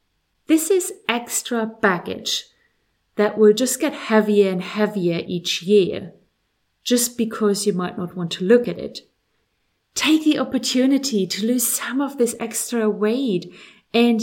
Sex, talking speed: female, 145 wpm